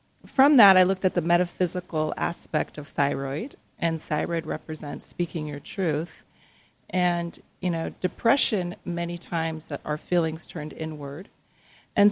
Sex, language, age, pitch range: female, English, 40-59, 155-185 Hz